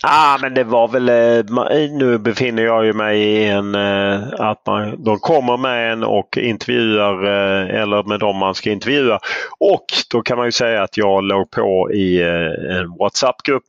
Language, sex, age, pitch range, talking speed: English, male, 30-49, 95-115 Hz, 195 wpm